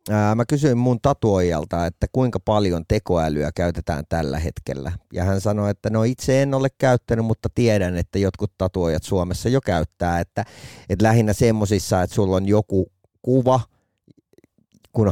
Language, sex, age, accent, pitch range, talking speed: Finnish, male, 30-49, native, 90-115 Hz, 150 wpm